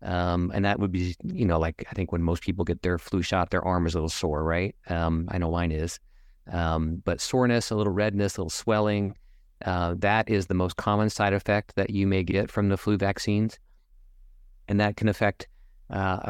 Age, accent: 30-49, American